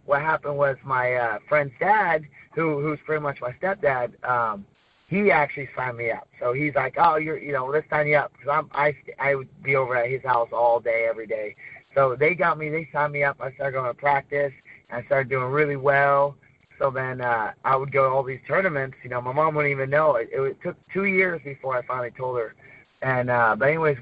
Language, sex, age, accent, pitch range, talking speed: English, male, 30-49, American, 125-145 Hz, 235 wpm